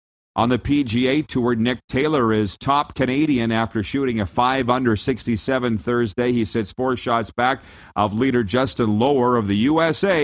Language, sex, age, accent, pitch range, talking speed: English, male, 50-69, American, 110-140 Hz, 160 wpm